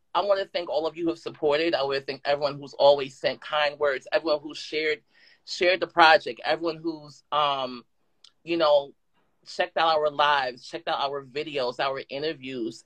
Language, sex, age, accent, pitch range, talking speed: English, male, 30-49, American, 145-185 Hz, 190 wpm